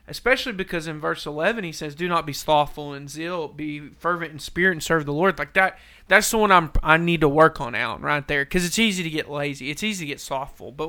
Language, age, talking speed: English, 30-49, 260 wpm